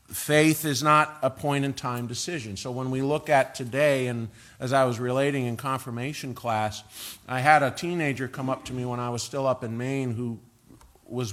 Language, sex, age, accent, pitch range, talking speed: English, male, 50-69, American, 115-140 Hz, 195 wpm